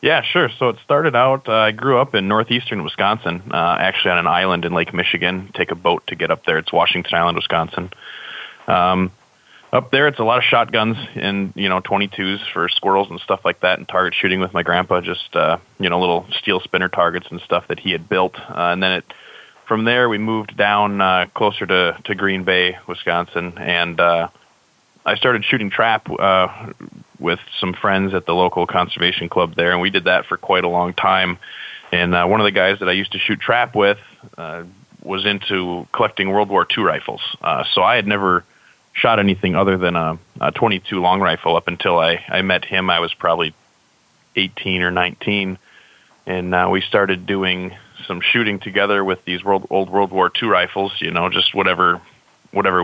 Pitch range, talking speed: 90-105 Hz, 205 wpm